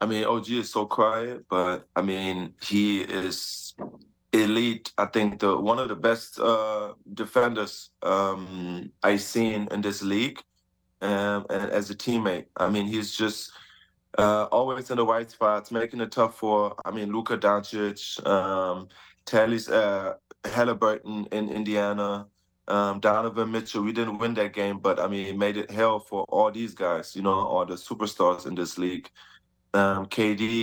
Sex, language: male, English